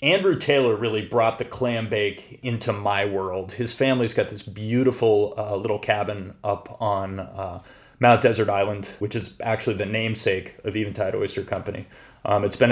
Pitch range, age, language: 105-125 Hz, 30-49, English